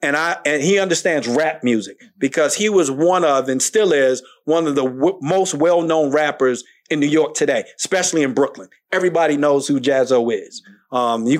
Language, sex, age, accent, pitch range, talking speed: English, male, 40-59, American, 145-180 Hz, 195 wpm